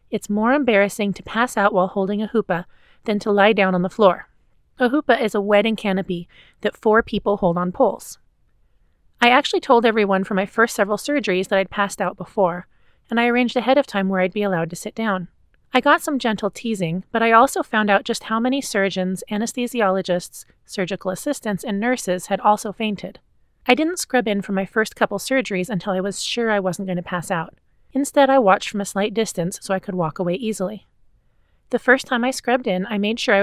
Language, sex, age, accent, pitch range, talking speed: English, female, 30-49, American, 190-230 Hz, 215 wpm